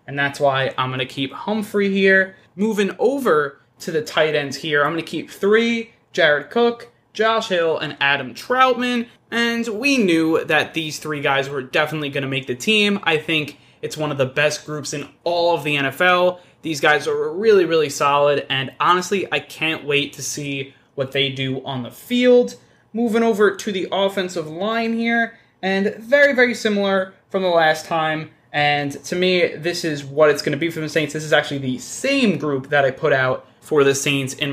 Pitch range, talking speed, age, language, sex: 140-200 Hz, 200 wpm, 20-39, English, male